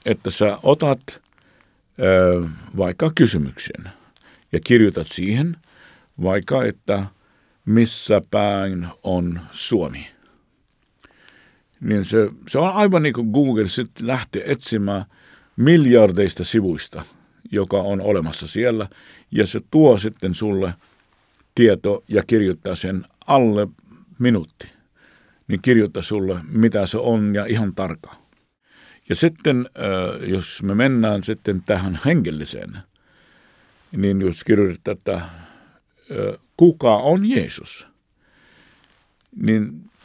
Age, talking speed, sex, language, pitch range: 50-69, 100 wpm, male, Finnish, 95-130 Hz